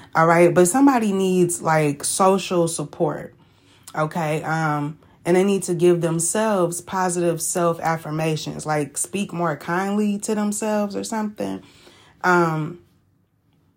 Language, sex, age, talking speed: English, female, 20-39, 120 wpm